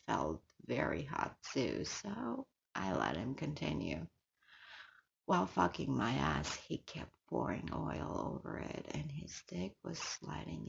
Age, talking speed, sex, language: 30-49, 135 wpm, female, English